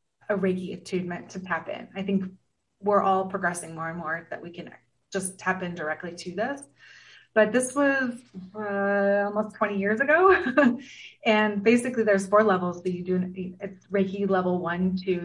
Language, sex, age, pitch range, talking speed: English, female, 30-49, 180-205 Hz, 175 wpm